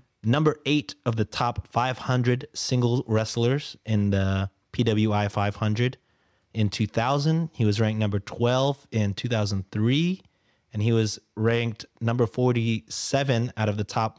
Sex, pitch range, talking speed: male, 105-120 Hz, 130 wpm